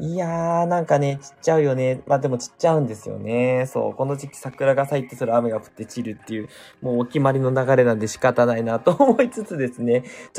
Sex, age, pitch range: male, 20-39, 120-175 Hz